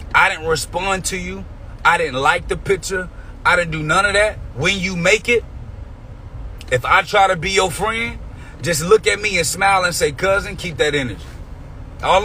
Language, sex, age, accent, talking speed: English, male, 30-49, American, 195 wpm